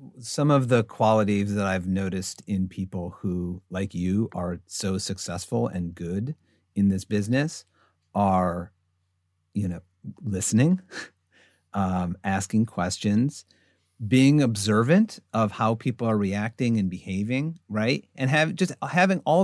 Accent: American